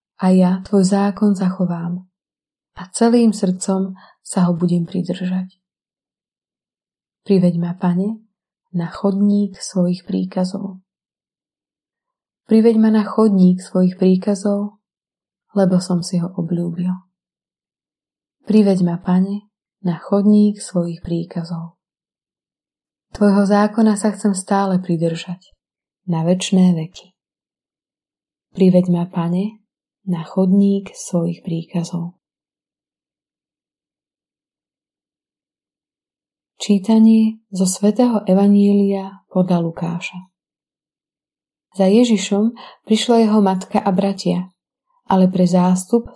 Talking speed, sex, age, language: 90 wpm, female, 20-39, Slovak